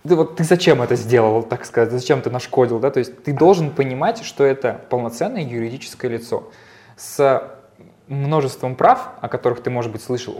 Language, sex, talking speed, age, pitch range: Russian, male, 180 wpm, 20-39, 115-140 Hz